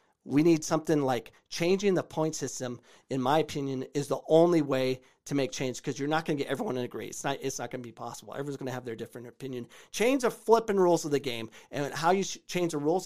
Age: 40-59